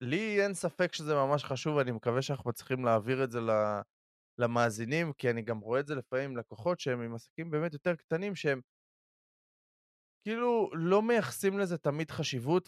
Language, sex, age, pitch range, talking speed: Hebrew, male, 20-39, 115-155 Hz, 170 wpm